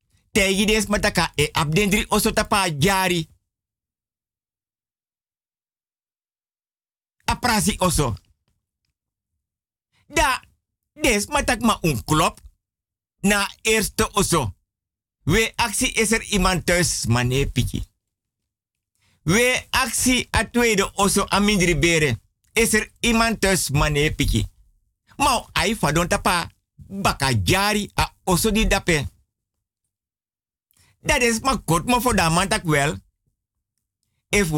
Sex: male